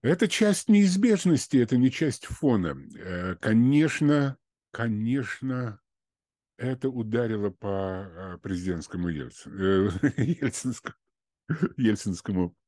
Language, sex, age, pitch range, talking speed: Russian, male, 50-69, 85-115 Hz, 65 wpm